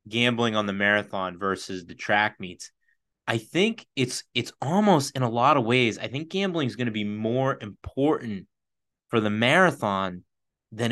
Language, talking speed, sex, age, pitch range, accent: English, 170 wpm, male, 30-49, 110-140 Hz, American